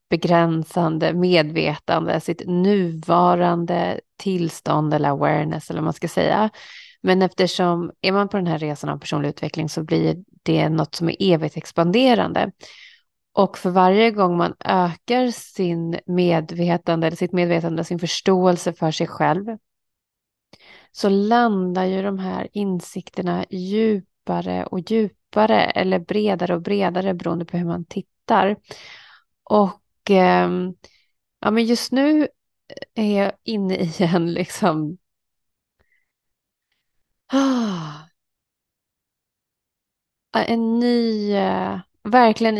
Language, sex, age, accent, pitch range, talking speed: English, female, 30-49, Swedish, 170-200 Hz, 110 wpm